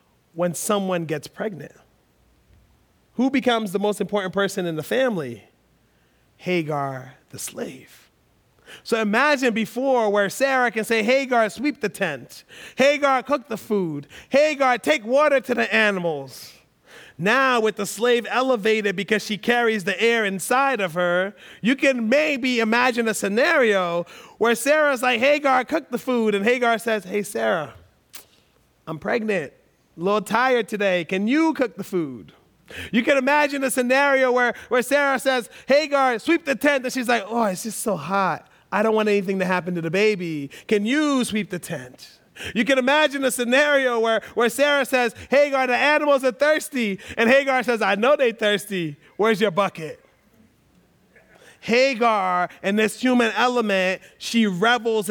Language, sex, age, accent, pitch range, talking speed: English, male, 30-49, American, 195-260 Hz, 160 wpm